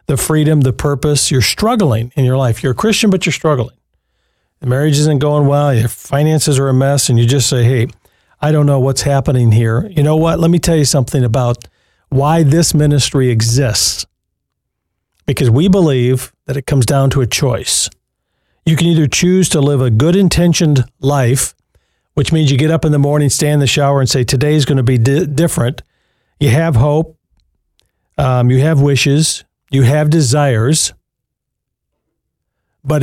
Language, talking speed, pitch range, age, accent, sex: English, 180 wpm, 125-150 Hz, 50-69, American, male